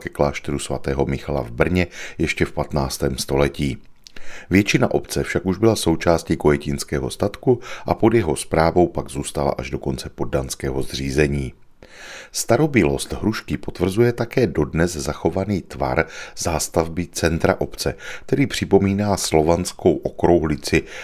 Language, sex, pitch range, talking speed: Czech, male, 75-90 Hz, 125 wpm